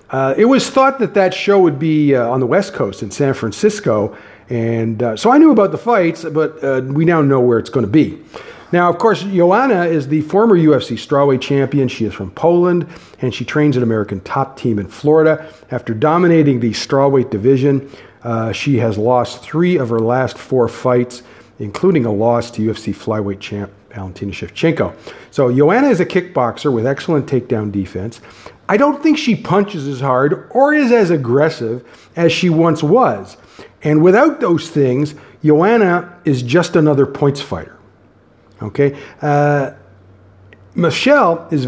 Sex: male